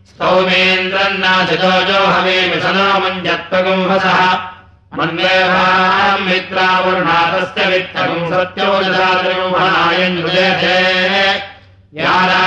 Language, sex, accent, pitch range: Russian, male, Indian, 180-185 Hz